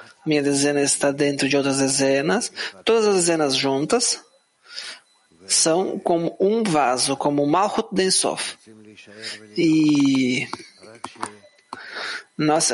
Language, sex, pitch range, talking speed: English, male, 135-155 Hz, 95 wpm